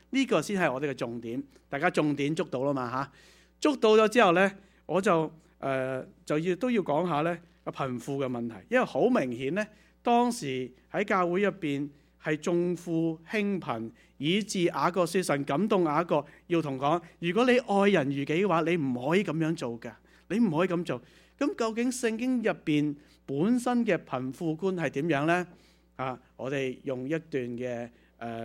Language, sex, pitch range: English, male, 140-195 Hz